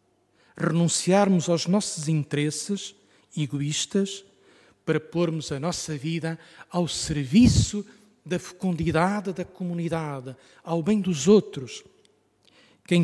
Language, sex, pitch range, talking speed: Portuguese, male, 140-195 Hz, 95 wpm